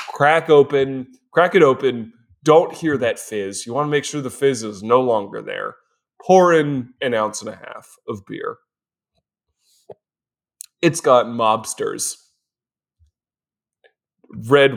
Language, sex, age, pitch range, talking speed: English, male, 20-39, 110-145 Hz, 135 wpm